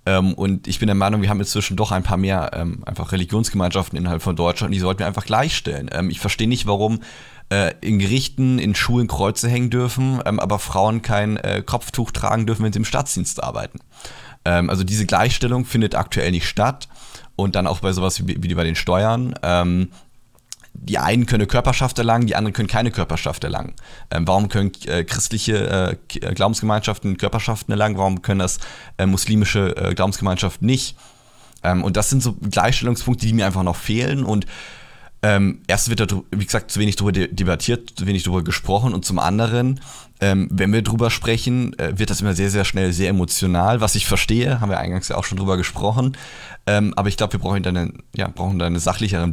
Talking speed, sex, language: 200 wpm, male, German